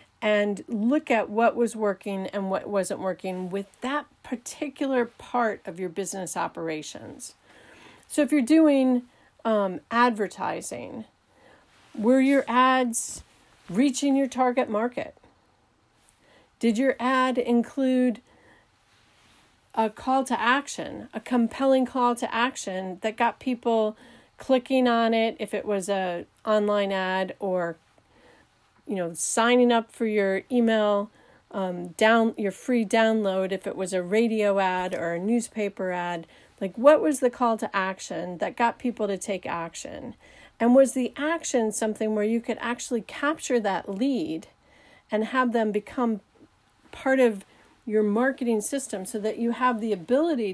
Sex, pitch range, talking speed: female, 195-250 Hz, 140 wpm